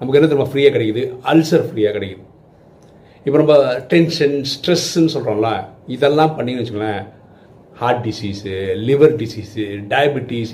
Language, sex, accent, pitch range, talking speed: Tamil, male, native, 110-160 Hz, 120 wpm